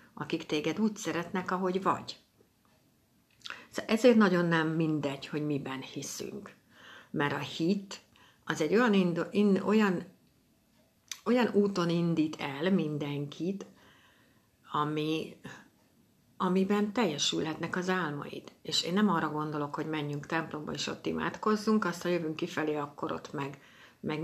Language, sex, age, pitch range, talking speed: Hungarian, female, 60-79, 155-190 Hz, 125 wpm